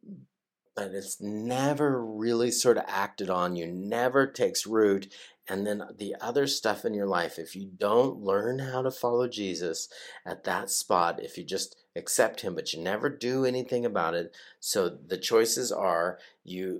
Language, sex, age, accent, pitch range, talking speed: English, male, 50-69, American, 95-135 Hz, 170 wpm